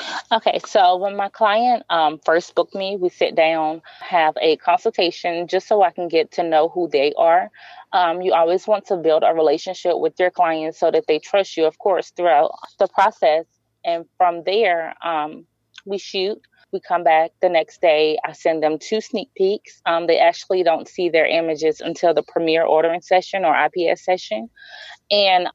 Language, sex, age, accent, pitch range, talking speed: English, female, 20-39, American, 160-200 Hz, 190 wpm